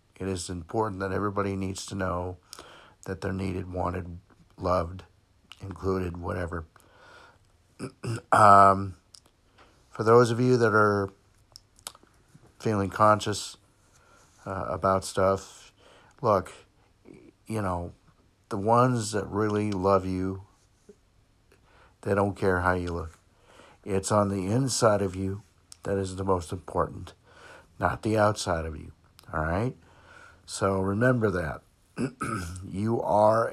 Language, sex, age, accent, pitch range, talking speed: English, male, 60-79, American, 95-110 Hz, 115 wpm